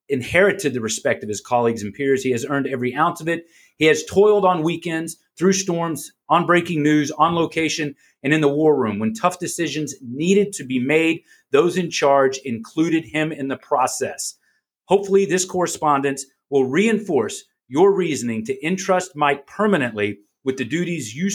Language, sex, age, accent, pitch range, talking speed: English, male, 30-49, American, 135-175 Hz, 175 wpm